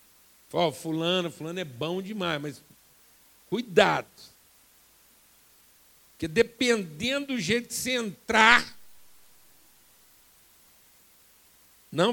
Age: 60-79